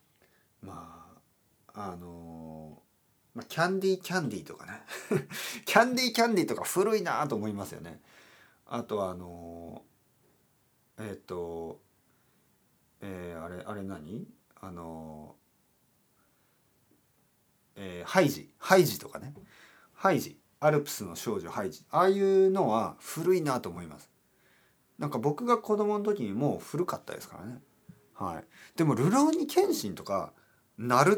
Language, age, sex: Japanese, 40-59, male